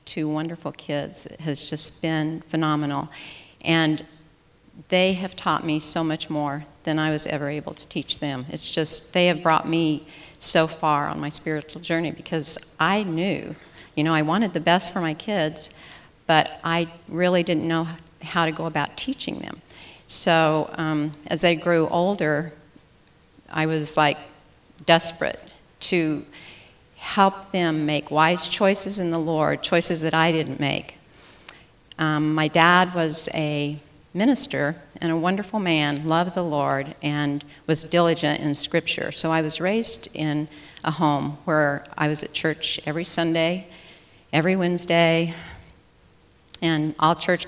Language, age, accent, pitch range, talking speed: English, 50-69, American, 150-170 Hz, 150 wpm